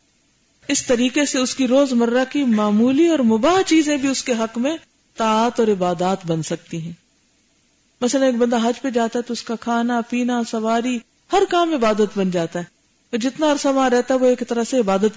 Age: 50-69